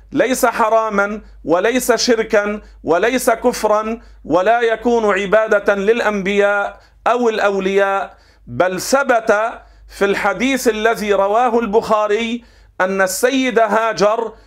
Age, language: 50-69, Arabic